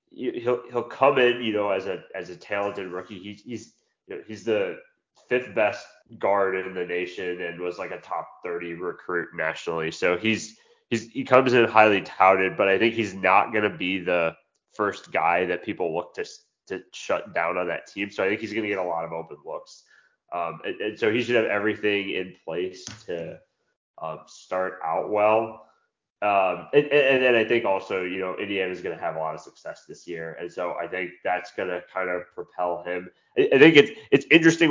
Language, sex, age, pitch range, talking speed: English, male, 20-39, 90-120 Hz, 215 wpm